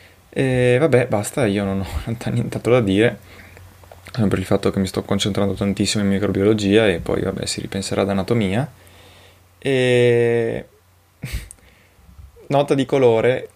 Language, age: Italian, 20-39